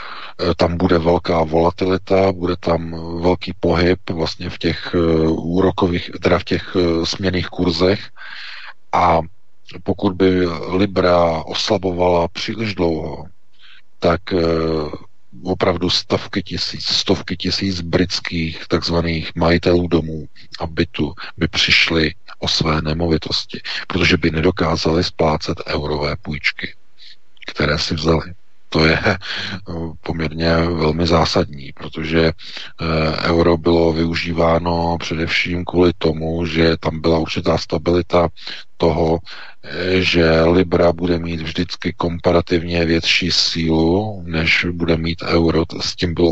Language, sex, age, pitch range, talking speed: Czech, male, 40-59, 80-90 Hz, 105 wpm